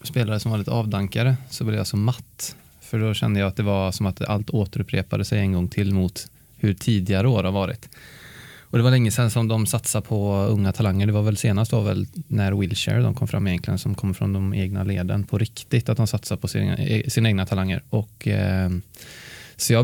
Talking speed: 225 wpm